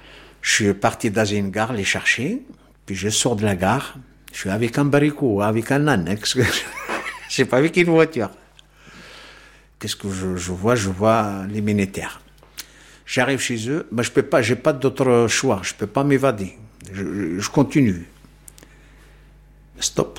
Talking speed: 165 wpm